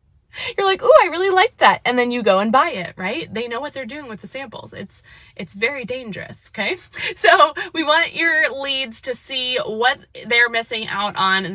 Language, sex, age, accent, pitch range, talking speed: English, female, 20-39, American, 200-285 Hz, 215 wpm